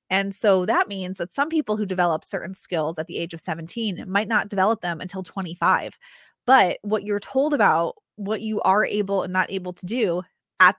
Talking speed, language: 210 wpm, English